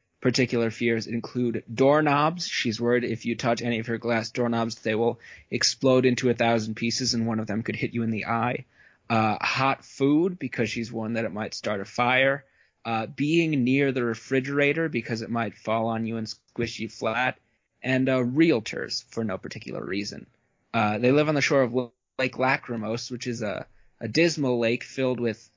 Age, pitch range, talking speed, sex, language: 20-39, 115-130 Hz, 190 wpm, male, English